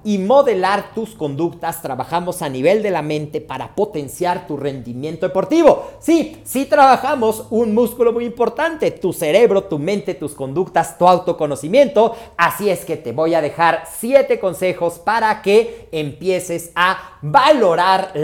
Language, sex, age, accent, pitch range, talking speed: Spanish, male, 40-59, Mexican, 155-210 Hz, 145 wpm